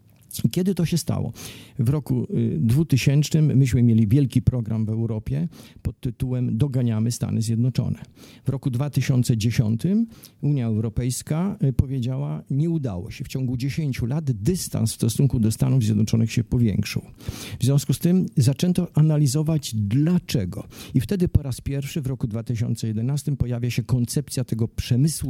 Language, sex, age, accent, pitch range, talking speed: Polish, male, 50-69, native, 115-140 Hz, 140 wpm